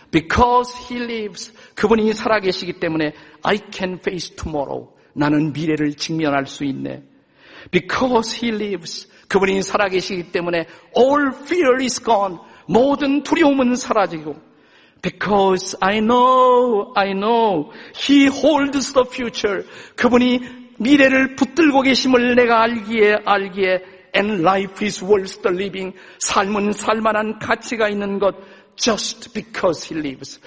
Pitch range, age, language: 185-250 Hz, 50-69, Korean